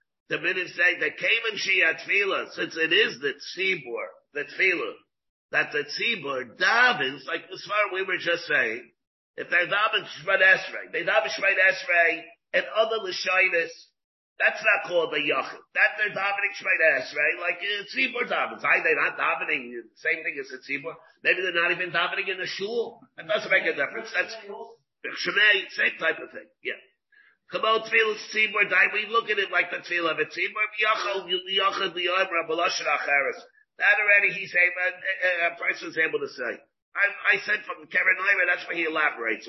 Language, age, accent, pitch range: English, 50-69, American, 175-235 Hz